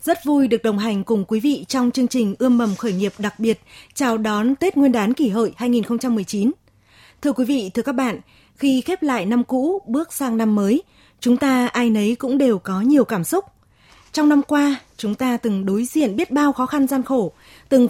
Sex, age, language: female, 20-39, Vietnamese